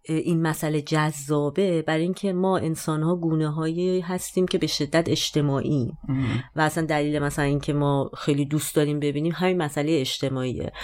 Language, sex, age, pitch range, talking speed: Persian, female, 30-49, 140-165 Hz, 145 wpm